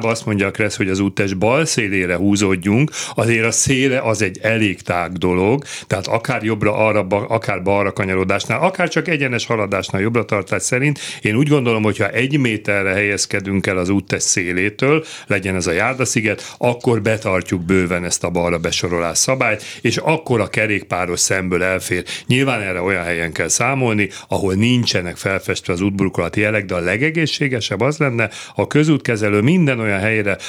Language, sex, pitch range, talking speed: Hungarian, male, 95-125 Hz, 165 wpm